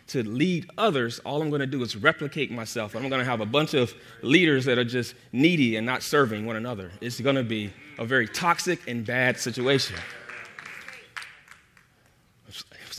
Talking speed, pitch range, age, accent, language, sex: 180 wpm, 105-125 Hz, 30-49, American, English, male